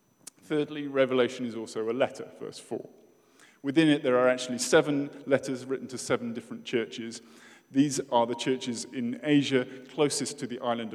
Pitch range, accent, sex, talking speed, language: 115-140 Hz, British, male, 165 wpm, English